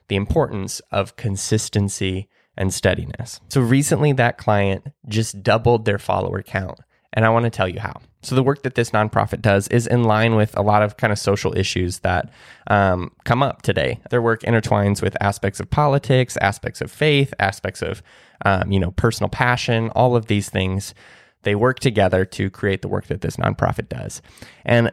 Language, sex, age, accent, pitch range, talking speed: English, male, 20-39, American, 100-120 Hz, 190 wpm